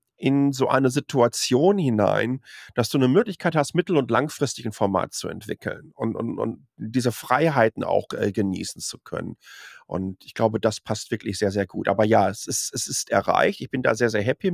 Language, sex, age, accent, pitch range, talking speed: German, male, 40-59, German, 105-145 Hz, 200 wpm